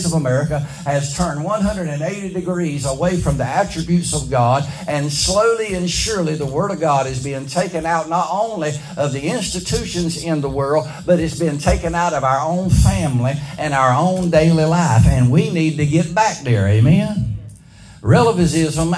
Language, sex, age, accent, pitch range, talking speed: English, male, 60-79, American, 135-175 Hz, 175 wpm